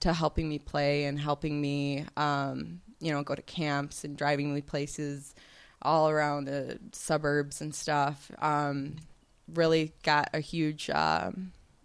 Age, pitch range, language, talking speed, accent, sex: 20-39, 145-165 Hz, English, 145 wpm, American, female